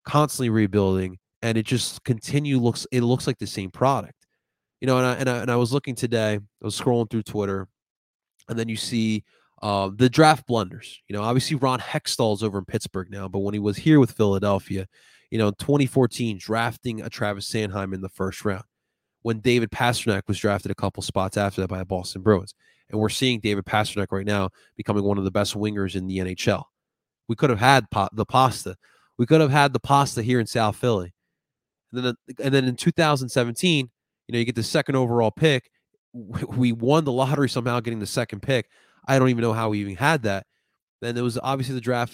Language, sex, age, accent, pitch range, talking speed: English, male, 20-39, American, 105-125 Hz, 210 wpm